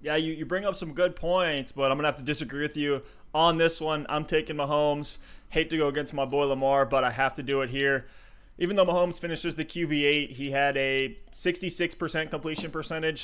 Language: English